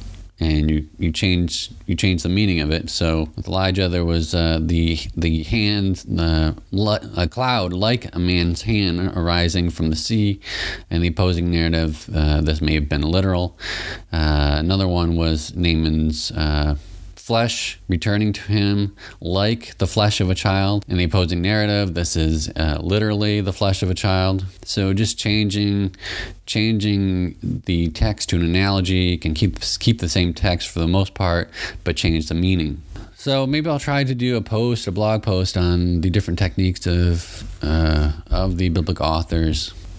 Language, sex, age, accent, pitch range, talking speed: English, male, 30-49, American, 85-100 Hz, 170 wpm